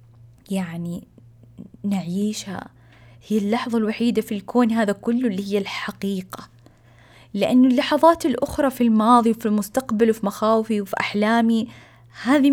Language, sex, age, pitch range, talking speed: Arabic, female, 20-39, 180-235 Hz, 115 wpm